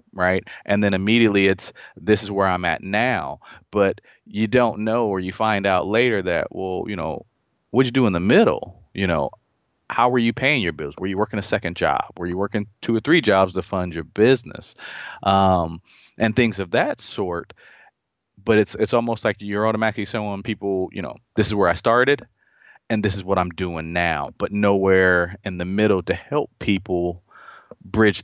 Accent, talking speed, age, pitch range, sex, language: American, 200 wpm, 30-49, 95-110 Hz, male, English